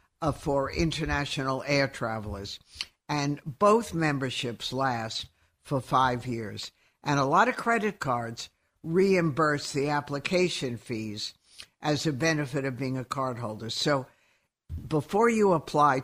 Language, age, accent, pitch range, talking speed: English, 60-79, American, 120-160 Hz, 120 wpm